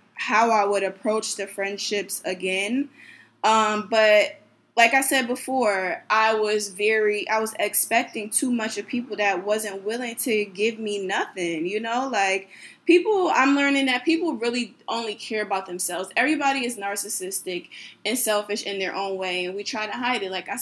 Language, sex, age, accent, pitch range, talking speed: English, female, 20-39, American, 205-260 Hz, 175 wpm